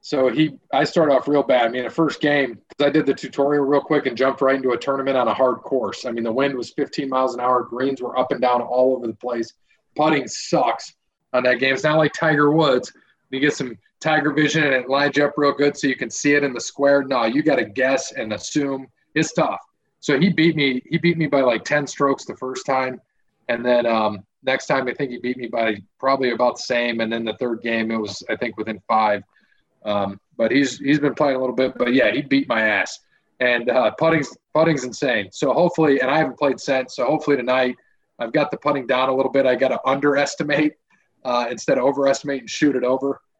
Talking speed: 245 wpm